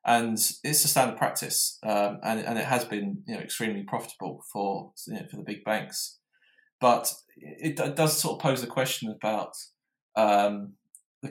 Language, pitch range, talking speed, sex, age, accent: English, 105-125 Hz, 180 wpm, male, 20-39, British